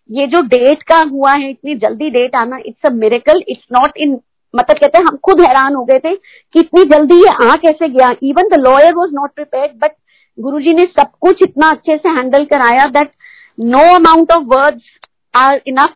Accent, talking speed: native, 40 wpm